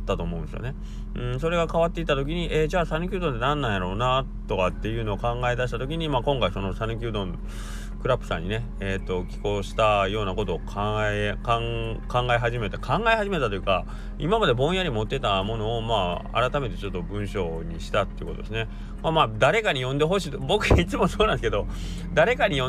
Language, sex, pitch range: Japanese, male, 100-145 Hz